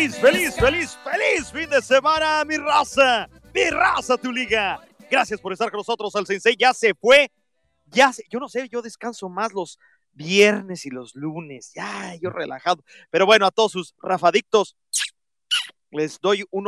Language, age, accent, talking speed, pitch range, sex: English, 40-59, Mexican, 175 wpm, 170-235 Hz, male